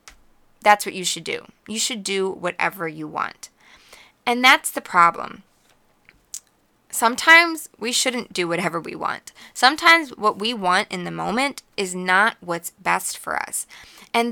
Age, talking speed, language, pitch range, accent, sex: 20-39, 150 wpm, English, 180-240 Hz, American, female